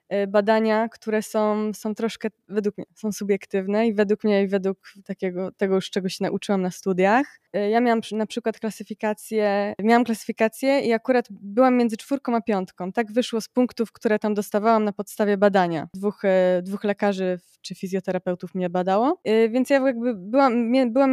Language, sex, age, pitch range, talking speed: Polish, female, 20-39, 200-235 Hz, 165 wpm